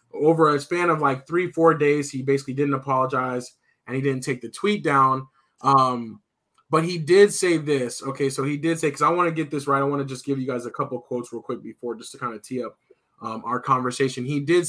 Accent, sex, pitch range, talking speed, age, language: American, male, 125-150 Hz, 250 wpm, 20-39, English